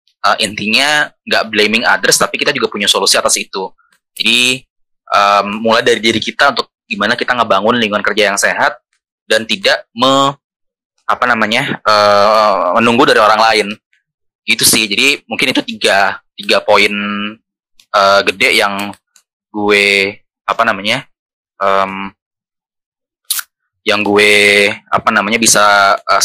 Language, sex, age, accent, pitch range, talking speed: Indonesian, male, 20-39, native, 100-120 Hz, 130 wpm